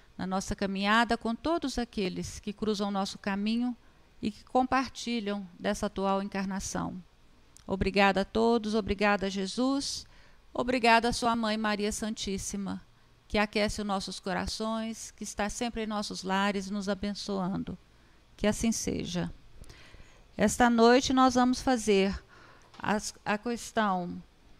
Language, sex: Portuguese, female